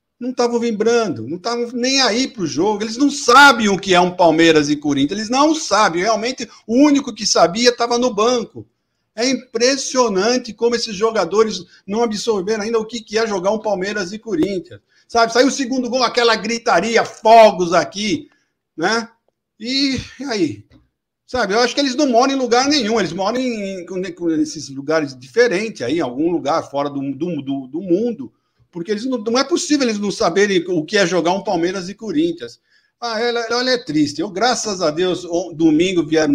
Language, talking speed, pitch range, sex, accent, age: Portuguese, 195 wpm, 165-245 Hz, male, Brazilian, 50-69